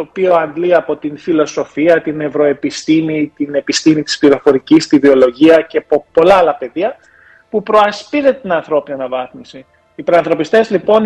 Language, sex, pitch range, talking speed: Greek, male, 155-235 Hz, 145 wpm